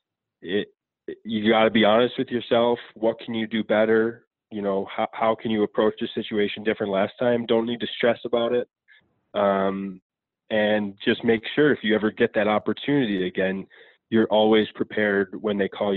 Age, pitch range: 20-39, 100-115 Hz